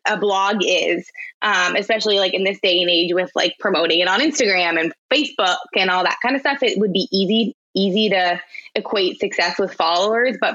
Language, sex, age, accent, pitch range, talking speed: English, female, 20-39, American, 180-230 Hz, 205 wpm